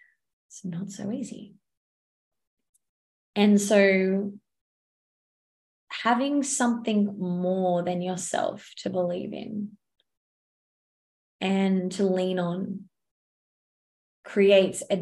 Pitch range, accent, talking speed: 180-205 Hz, Australian, 80 wpm